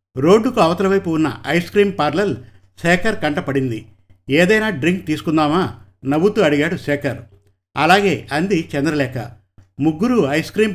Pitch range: 120-180 Hz